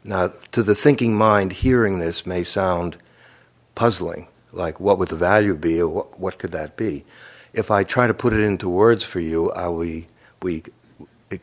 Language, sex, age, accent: English, male, 60-79, American